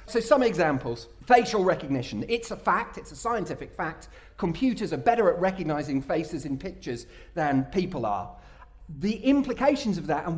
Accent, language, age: British, English, 40-59